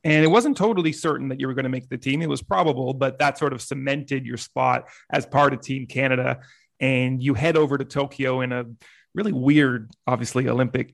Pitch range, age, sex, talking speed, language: 130-145 Hz, 30-49, male, 220 wpm, English